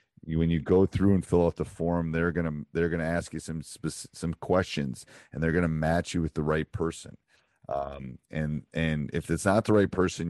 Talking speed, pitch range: 235 wpm, 75-90 Hz